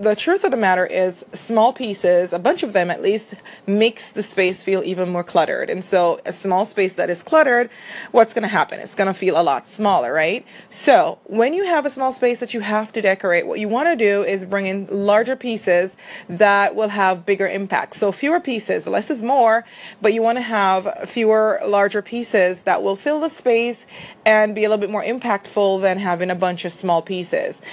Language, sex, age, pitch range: English, female, 30-49, 185-230 Hz